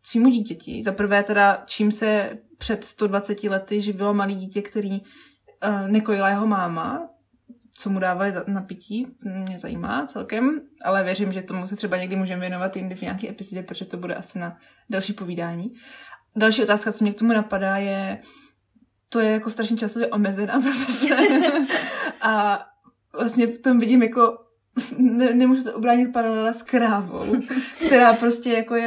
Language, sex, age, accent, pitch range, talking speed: Czech, female, 20-39, native, 195-235 Hz, 160 wpm